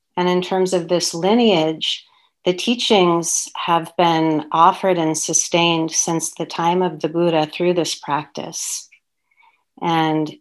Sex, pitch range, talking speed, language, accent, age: female, 155-175 Hz, 135 wpm, English, American, 40-59